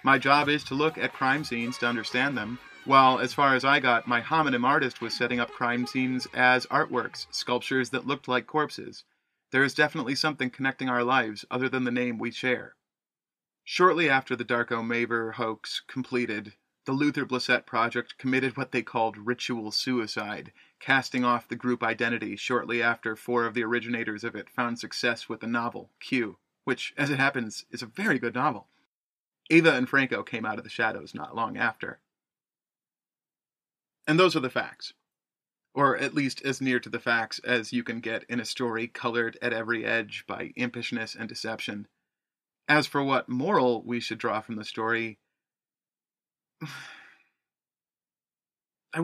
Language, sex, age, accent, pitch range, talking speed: English, male, 30-49, American, 120-135 Hz, 170 wpm